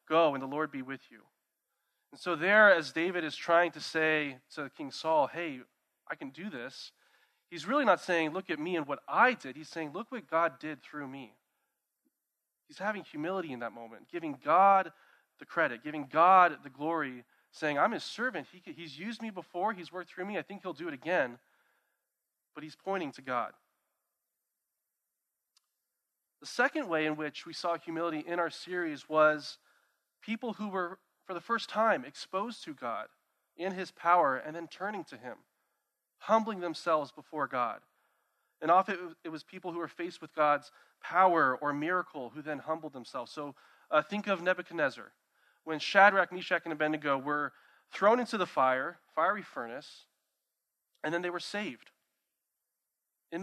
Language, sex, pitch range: English, male, 155-195 Hz